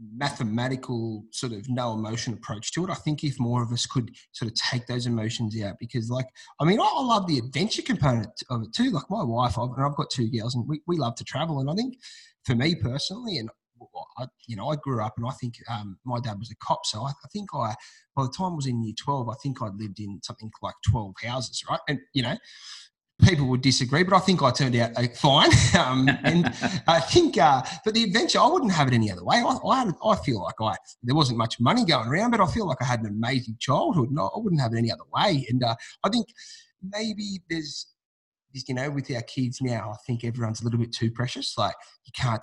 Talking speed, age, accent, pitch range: 250 wpm, 20-39, Australian, 115-155 Hz